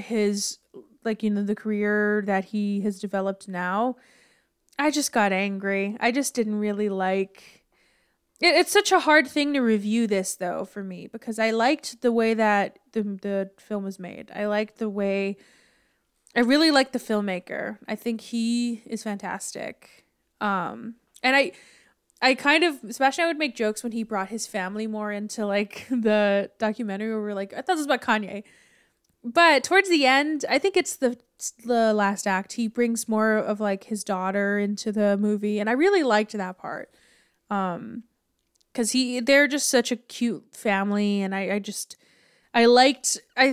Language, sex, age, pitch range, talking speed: English, female, 20-39, 205-250 Hz, 180 wpm